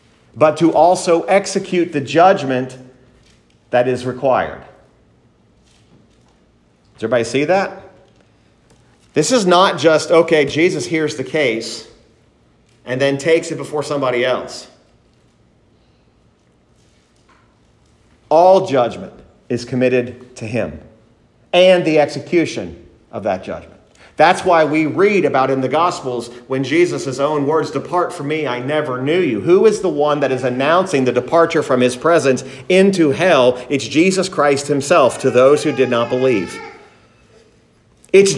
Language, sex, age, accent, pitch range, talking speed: English, male, 40-59, American, 125-175 Hz, 135 wpm